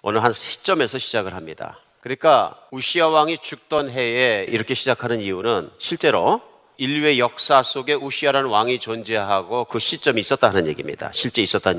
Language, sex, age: Korean, male, 40-59